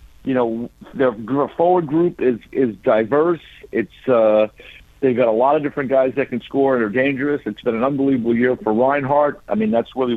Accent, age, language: American, 60-79, English